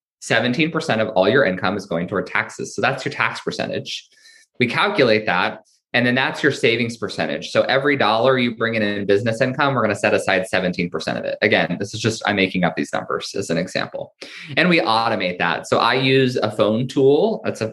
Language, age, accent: English, 20-39, American